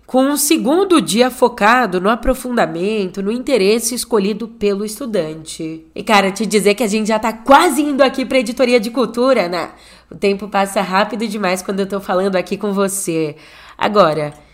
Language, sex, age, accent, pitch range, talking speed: Portuguese, female, 10-29, Brazilian, 195-255 Hz, 180 wpm